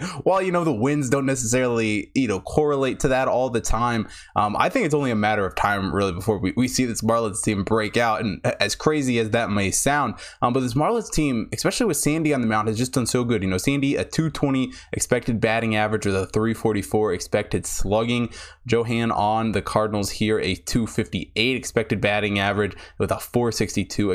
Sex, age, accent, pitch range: male, 20-39, American, 105-135 Hz